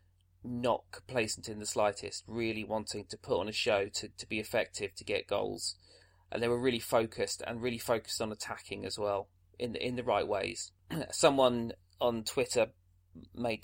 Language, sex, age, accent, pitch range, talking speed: English, male, 20-39, British, 95-115 Hz, 180 wpm